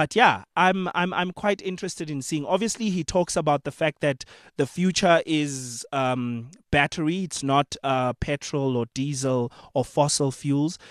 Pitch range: 130-160 Hz